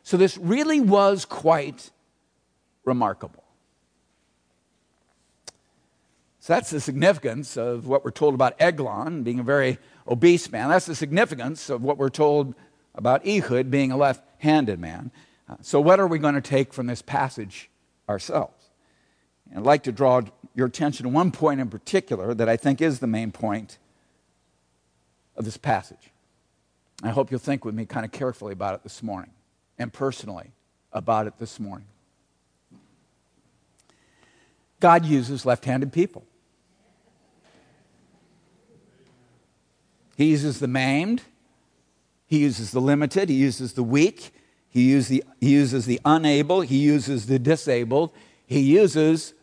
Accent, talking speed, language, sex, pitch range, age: American, 140 wpm, English, male, 105-150 Hz, 50-69